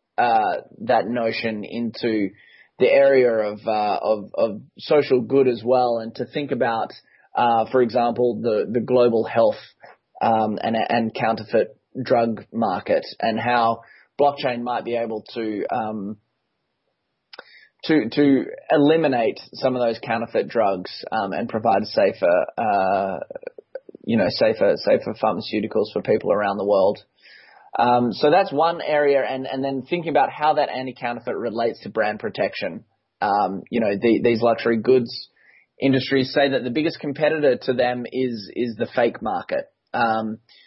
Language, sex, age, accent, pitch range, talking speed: English, male, 20-39, Australian, 115-140 Hz, 150 wpm